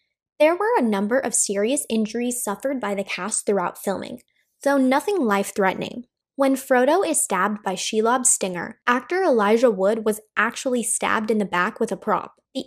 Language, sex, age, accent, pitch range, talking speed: English, female, 10-29, American, 205-280 Hz, 170 wpm